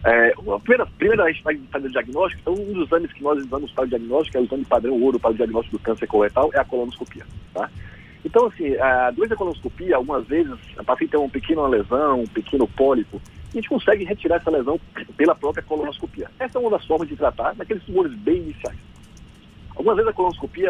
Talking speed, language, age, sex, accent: 220 wpm, Portuguese, 40-59, male, Brazilian